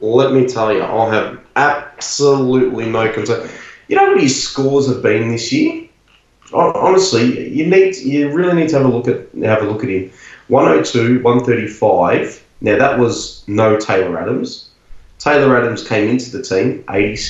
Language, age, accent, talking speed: English, 20-39, Australian, 175 wpm